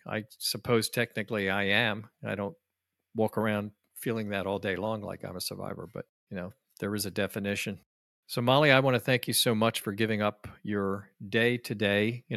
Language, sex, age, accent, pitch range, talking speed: English, male, 50-69, American, 100-115 Hz, 200 wpm